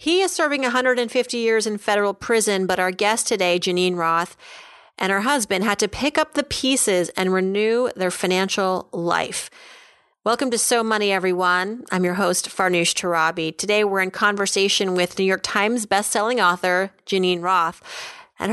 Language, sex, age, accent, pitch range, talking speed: English, female, 30-49, American, 180-240 Hz, 165 wpm